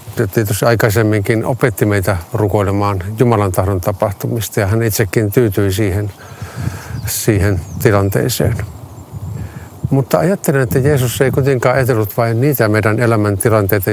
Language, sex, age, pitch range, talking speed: Finnish, male, 50-69, 105-125 Hz, 110 wpm